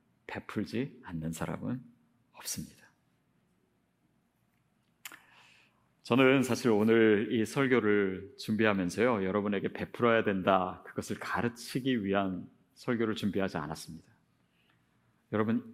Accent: native